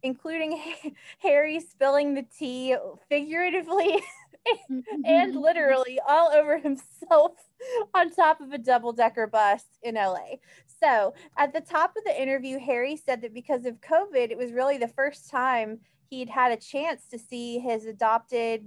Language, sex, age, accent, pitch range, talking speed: English, female, 20-39, American, 235-300 Hz, 150 wpm